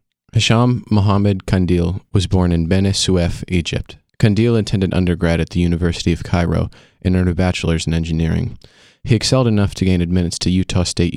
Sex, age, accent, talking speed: male, 30-49, American, 165 wpm